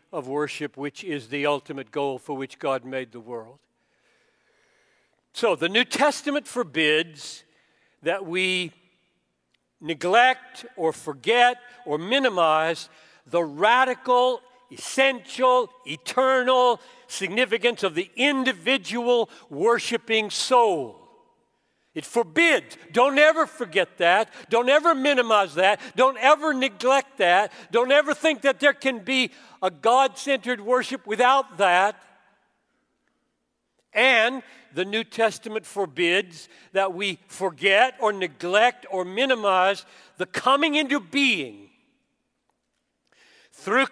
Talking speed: 105 wpm